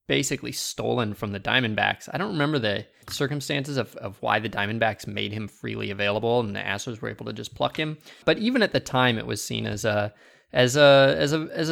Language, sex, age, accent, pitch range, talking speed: English, male, 20-39, American, 105-140 Hz, 220 wpm